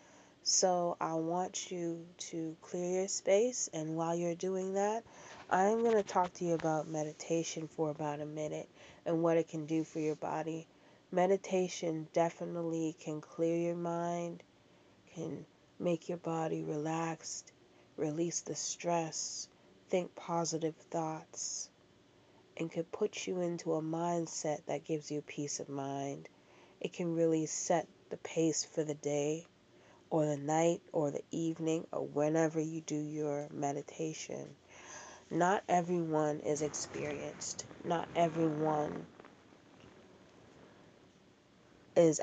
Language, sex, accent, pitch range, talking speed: English, female, American, 150-170 Hz, 130 wpm